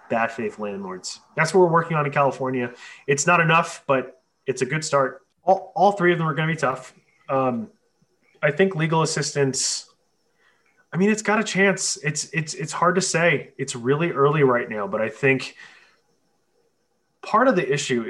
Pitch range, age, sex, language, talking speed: 125-170 Hz, 20-39, male, English, 190 wpm